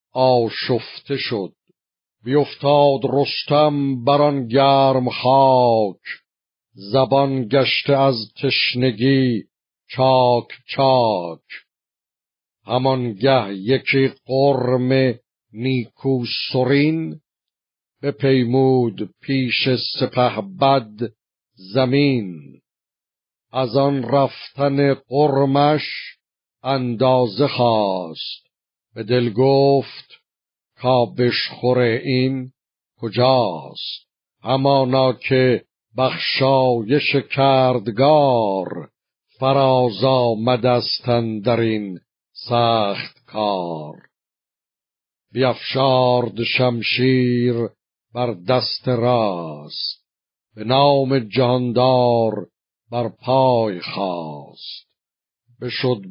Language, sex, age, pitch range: Persian, male, 50-69, 120-135 Hz